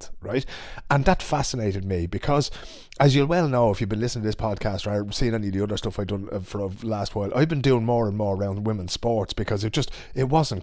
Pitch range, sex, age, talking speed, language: 100-120 Hz, male, 30-49, 250 wpm, English